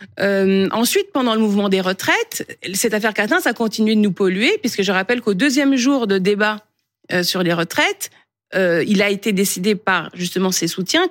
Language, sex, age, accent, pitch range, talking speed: French, female, 40-59, French, 195-275 Hz, 195 wpm